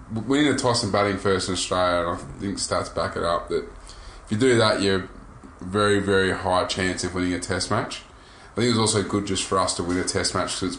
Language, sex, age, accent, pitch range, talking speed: English, male, 20-39, Australian, 90-105 Hz, 255 wpm